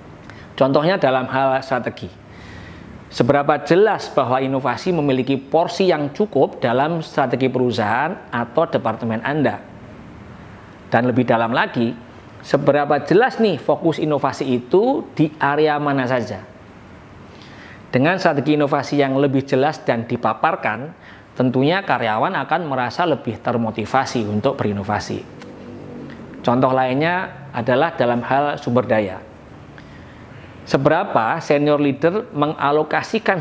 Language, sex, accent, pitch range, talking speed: Indonesian, male, native, 120-150 Hz, 105 wpm